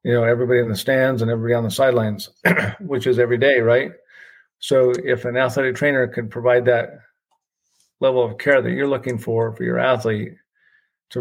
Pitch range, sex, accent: 110-125 Hz, male, American